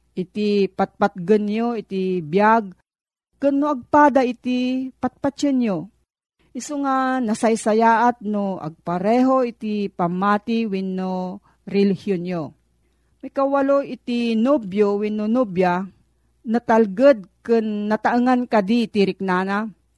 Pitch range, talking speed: 190-250 Hz, 90 wpm